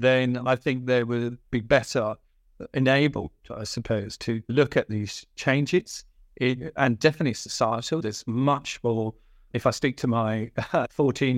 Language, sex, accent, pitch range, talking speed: English, male, British, 110-130 Hz, 140 wpm